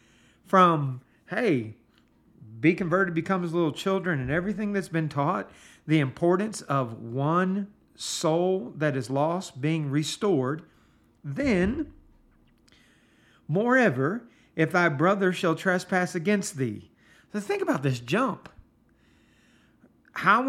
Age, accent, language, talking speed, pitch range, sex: 50-69, American, English, 110 wpm, 140-180 Hz, male